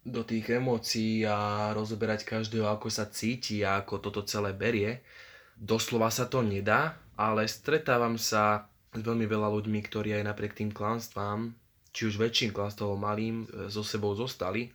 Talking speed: 160 wpm